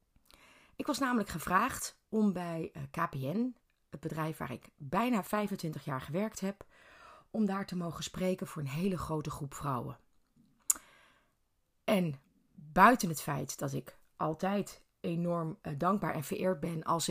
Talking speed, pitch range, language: 140 wpm, 145-195 Hz, Dutch